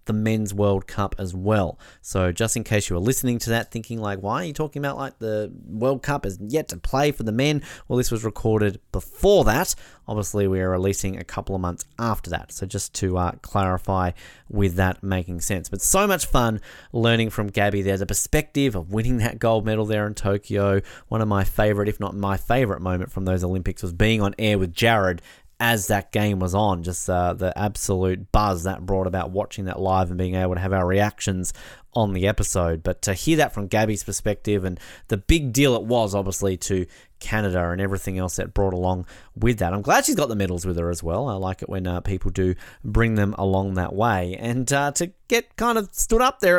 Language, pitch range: English, 95-120 Hz